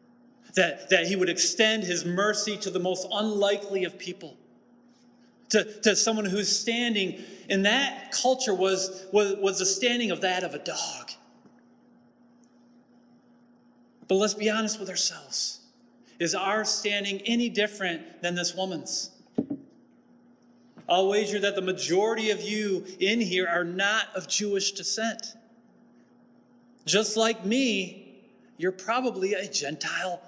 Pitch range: 200-245 Hz